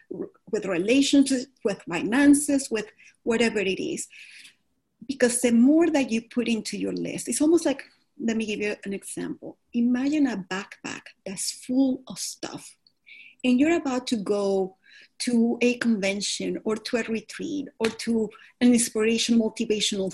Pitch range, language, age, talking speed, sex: 205-270 Hz, English, 30-49, 150 wpm, female